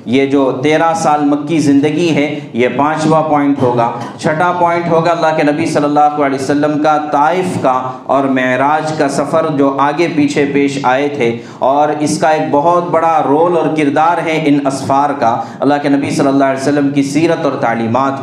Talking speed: 190 wpm